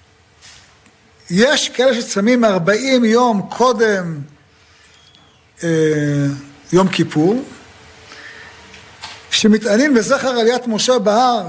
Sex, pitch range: male, 150-220 Hz